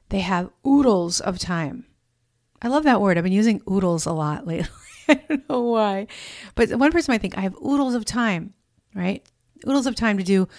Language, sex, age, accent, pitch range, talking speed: English, female, 40-59, American, 170-225 Hz, 205 wpm